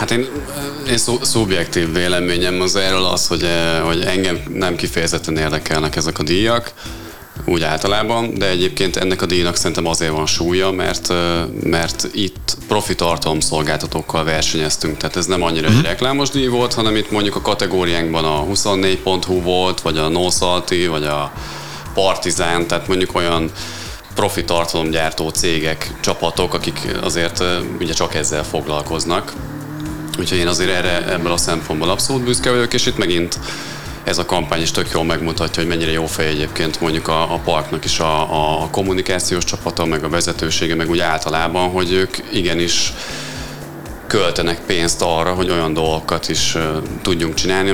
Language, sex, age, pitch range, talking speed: Hungarian, male, 30-49, 80-95 Hz, 150 wpm